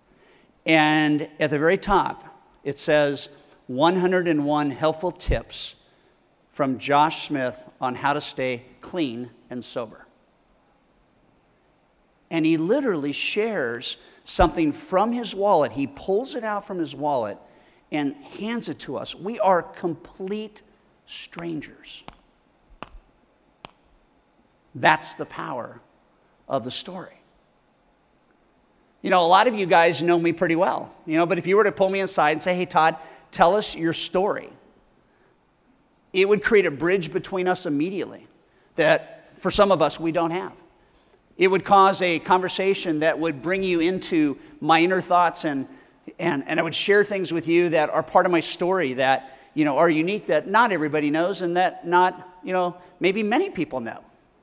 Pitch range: 155-195 Hz